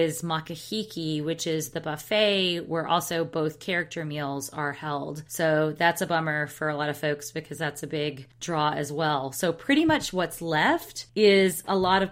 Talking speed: 190 wpm